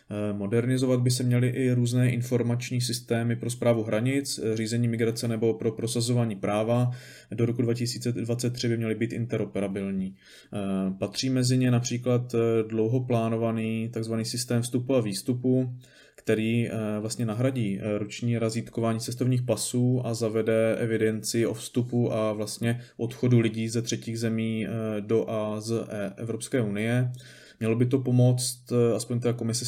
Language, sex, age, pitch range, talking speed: Czech, male, 20-39, 110-120 Hz, 130 wpm